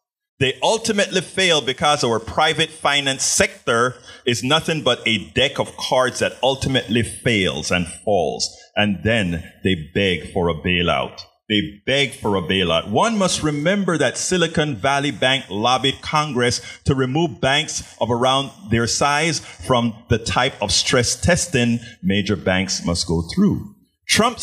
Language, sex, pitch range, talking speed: English, male, 105-145 Hz, 145 wpm